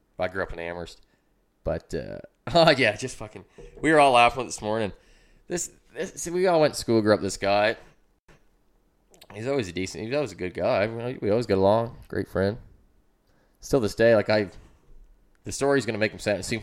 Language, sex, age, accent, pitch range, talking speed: English, male, 20-39, American, 95-125 Hz, 215 wpm